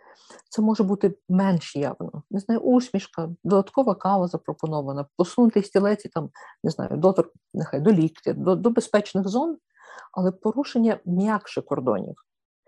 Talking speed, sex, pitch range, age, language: 135 wpm, female, 165-200 Hz, 50-69, Ukrainian